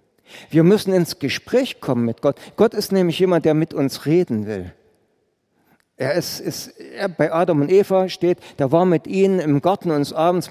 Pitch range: 140-175 Hz